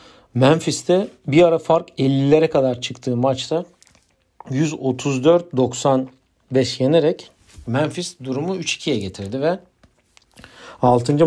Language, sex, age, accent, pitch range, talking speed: Turkish, male, 50-69, native, 110-135 Hz, 85 wpm